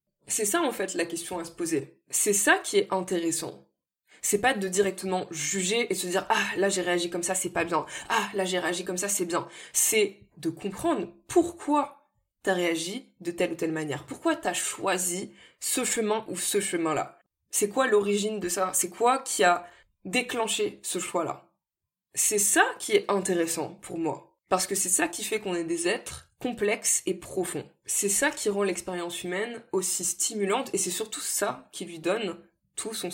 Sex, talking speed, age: female, 200 wpm, 20-39